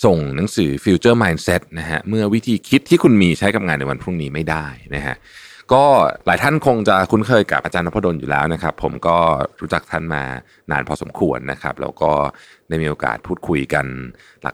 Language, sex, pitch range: Thai, male, 70-95 Hz